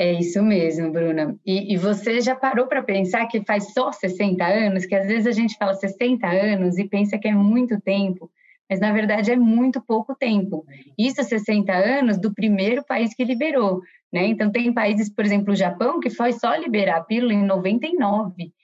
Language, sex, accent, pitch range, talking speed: Portuguese, female, Brazilian, 180-230 Hz, 195 wpm